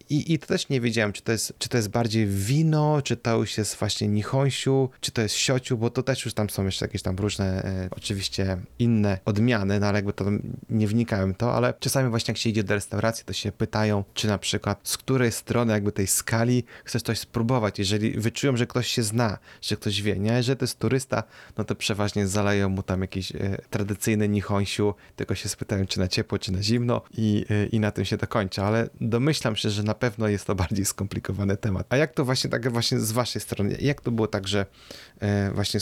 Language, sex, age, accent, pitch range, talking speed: Polish, male, 20-39, native, 100-125 Hz, 225 wpm